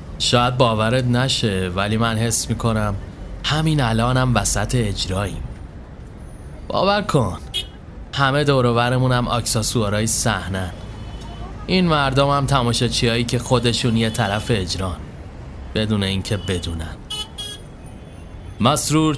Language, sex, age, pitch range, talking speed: Persian, male, 30-49, 100-130 Hz, 100 wpm